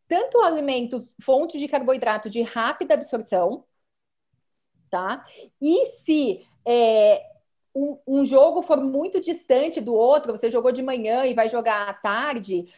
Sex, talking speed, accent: female, 130 wpm, Brazilian